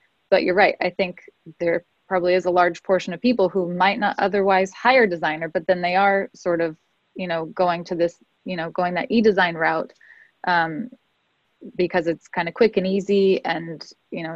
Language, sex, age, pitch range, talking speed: English, female, 20-39, 170-200 Hz, 200 wpm